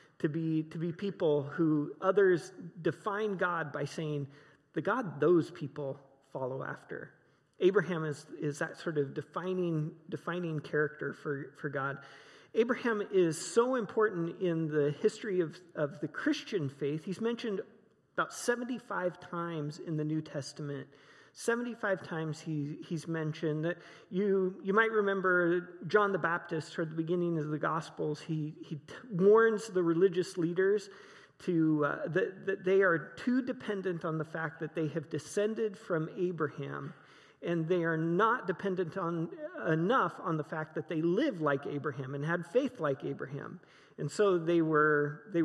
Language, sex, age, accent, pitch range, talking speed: English, male, 40-59, American, 150-190 Hz, 155 wpm